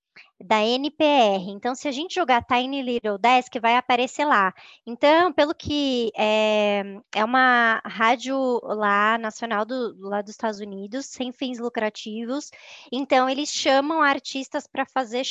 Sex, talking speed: male, 135 wpm